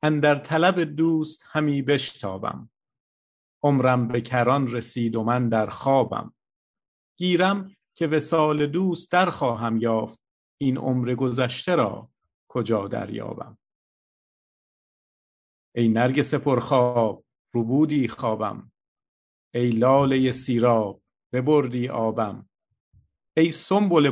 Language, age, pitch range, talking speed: Persian, 50-69, 120-145 Hz, 95 wpm